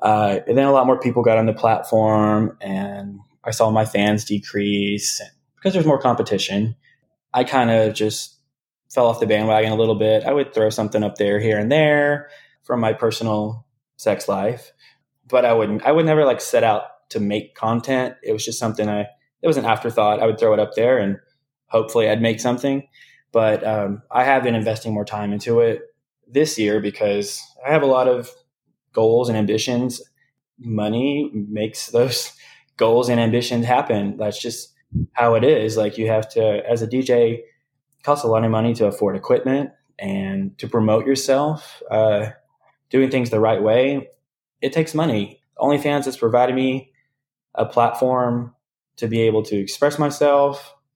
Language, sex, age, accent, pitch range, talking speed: English, male, 20-39, American, 105-135 Hz, 180 wpm